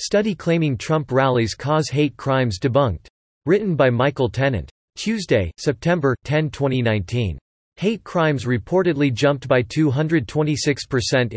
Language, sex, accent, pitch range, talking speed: English, male, American, 120-150 Hz, 115 wpm